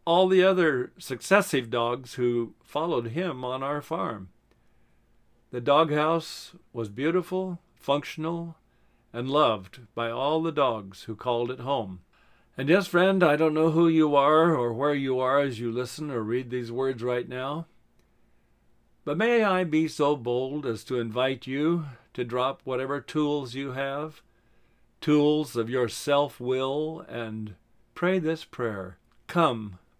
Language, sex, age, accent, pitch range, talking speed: English, male, 50-69, American, 115-155 Hz, 150 wpm